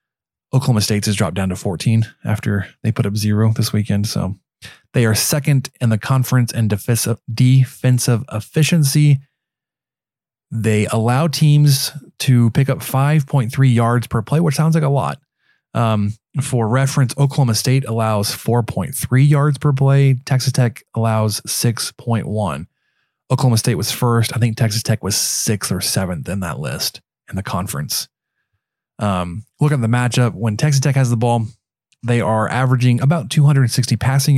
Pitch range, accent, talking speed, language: 110-135 Hz, American, 155 wpm, English